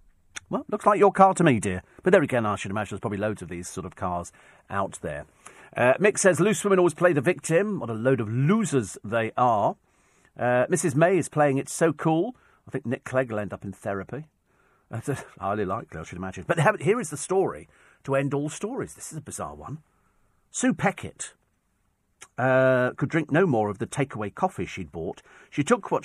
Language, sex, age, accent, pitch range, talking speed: English, male, 50-69, British, 105-165 Hz, 215 wpm